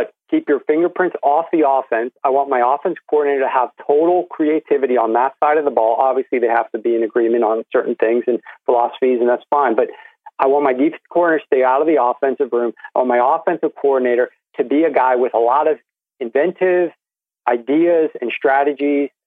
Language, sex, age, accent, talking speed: English, male, 40-59, American, 205 wpm